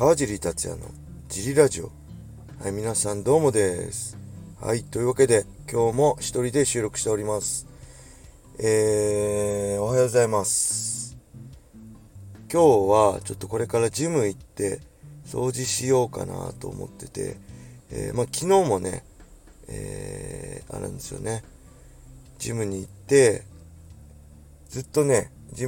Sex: male